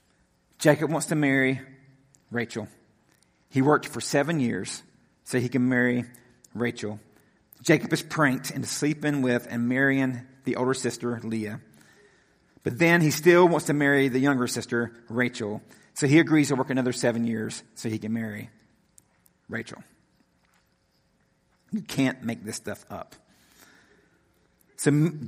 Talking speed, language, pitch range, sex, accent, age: 140 wpm, English, 125-165 Hz, male, American, 50-69